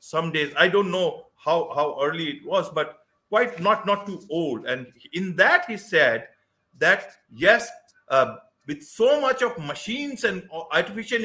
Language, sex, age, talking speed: English, male, 50-69, 165 wpm